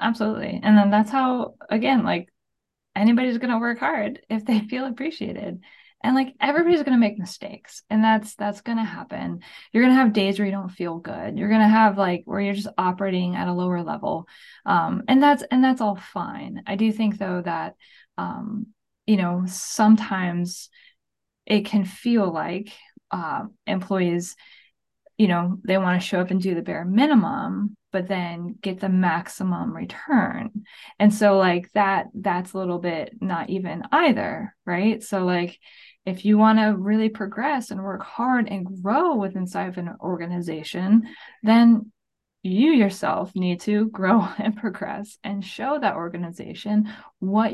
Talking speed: 170 wpm